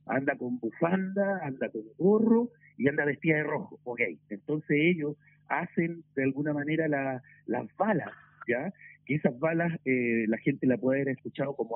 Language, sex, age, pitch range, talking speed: Spanish, male, 50-69, 130-170 Hz, 170 wpm